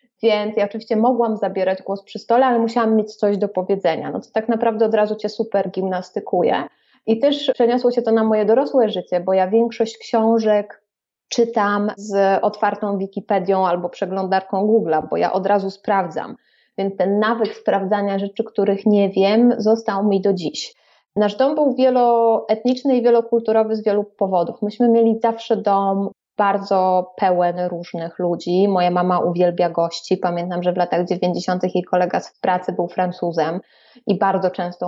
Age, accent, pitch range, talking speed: 20-39, native, 180-220 Hz, 165 wpm